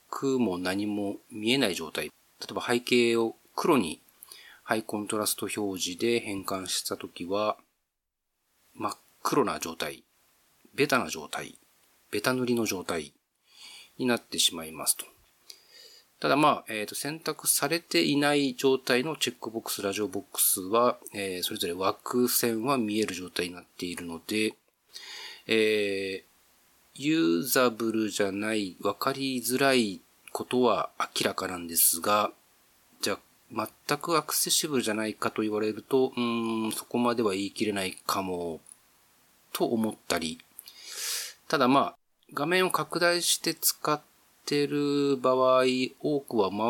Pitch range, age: 100-130 Hz, 40-59